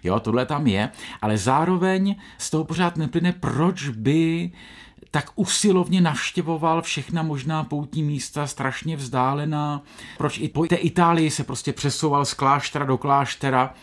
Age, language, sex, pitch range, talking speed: 50-69, Czech, male, 105-160 Hz, 145 wpm